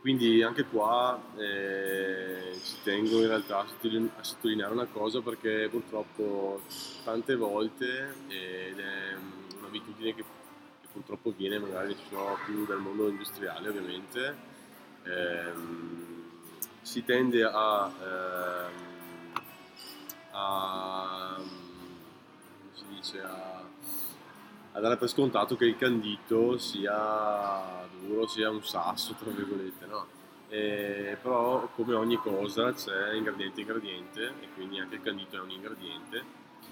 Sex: male